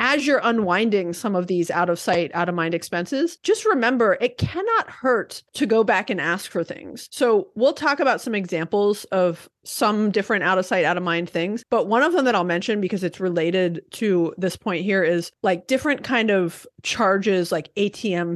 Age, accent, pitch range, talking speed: 30-49, American, 170-220 Hz, 180 wpm